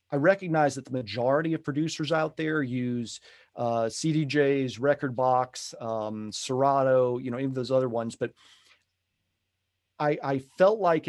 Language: English